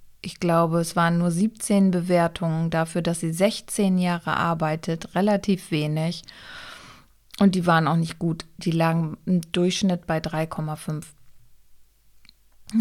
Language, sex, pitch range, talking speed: German, female, 165-200 Hz, 125 wpm